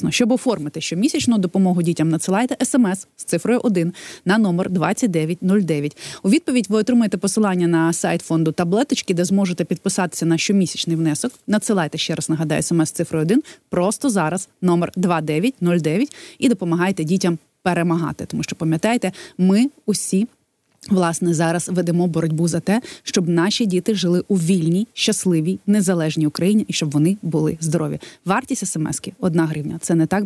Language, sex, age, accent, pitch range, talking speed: Ukrainian, female, 20-39, native, 170-210 Hz, 155 wpm